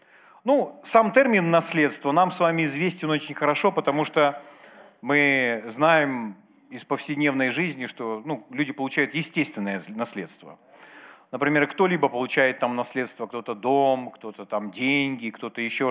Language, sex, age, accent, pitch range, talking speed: Russian, male, 40-59, native, 135-195 Hz, 130 wpm